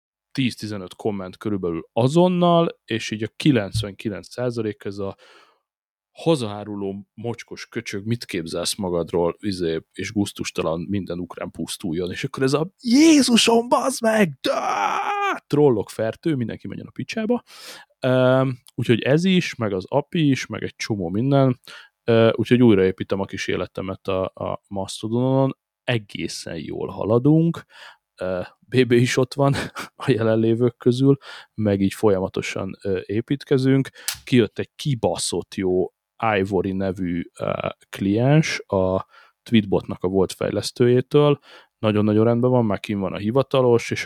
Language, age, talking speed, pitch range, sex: Hungarian, 30-49, 125 wpm, 100-135 Hz, male